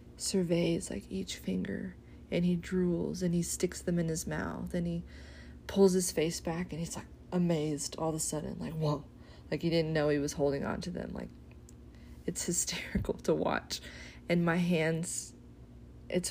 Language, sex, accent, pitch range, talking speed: English, female, American, 155-185 Hz, 180 wpm